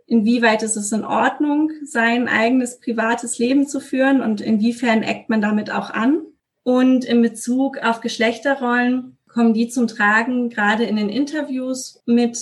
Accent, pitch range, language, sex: German, 210-255 Hz, German, female